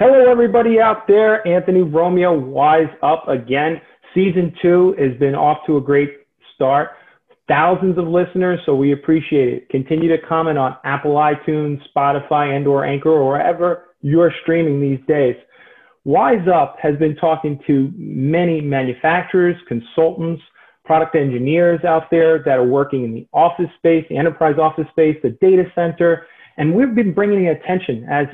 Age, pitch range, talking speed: 30-49, 145-180 Hz, 155 wpm